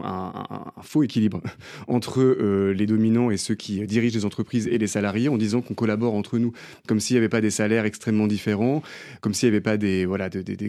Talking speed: 245 wpm